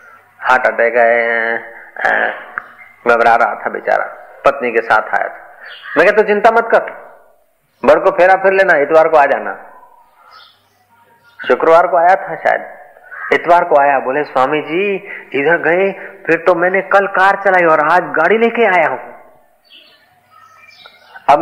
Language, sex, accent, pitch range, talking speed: Hindi, male, native, 130-210 Hz, 145 wpm